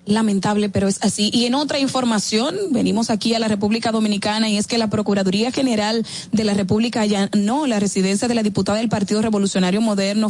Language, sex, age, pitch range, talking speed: Spanish, female, 30-49, 190-225 Hz, 200 wpm